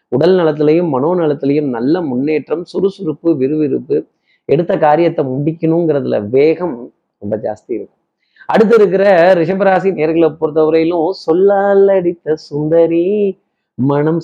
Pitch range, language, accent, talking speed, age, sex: 135-175 Hz, Tamil, native, 95 wpm, 30-49, male